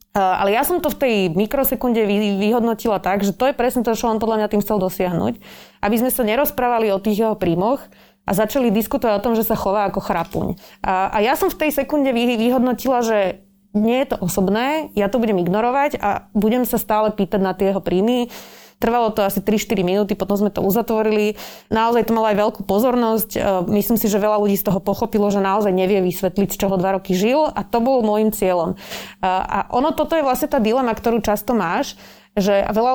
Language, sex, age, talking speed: Slovak, female, 20-39, 205 wpm